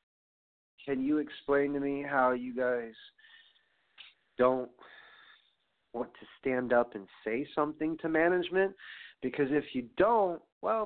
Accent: American